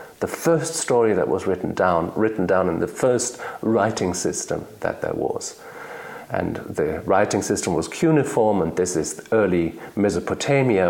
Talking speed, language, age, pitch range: 155 wpm, English, 50-69, 110-170 Hz